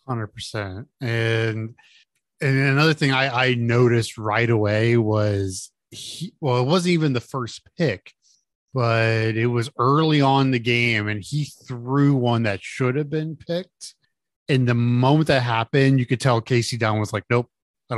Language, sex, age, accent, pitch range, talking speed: English, male, 20-39, American, 110-135 Hz, 165 wpm